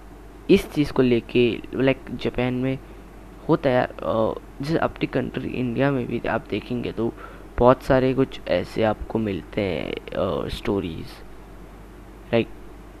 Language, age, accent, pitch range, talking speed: English, 20-39, Indian, 110-135 Hz, 125 wpm